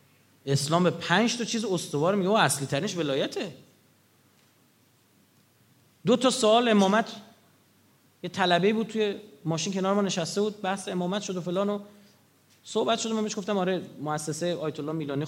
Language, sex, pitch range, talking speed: Persian, male, 140-205 Hz, 155 wpm